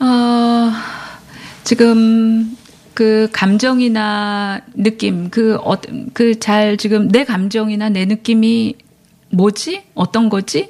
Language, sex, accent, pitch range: Korean, female, native, 210-260 Hz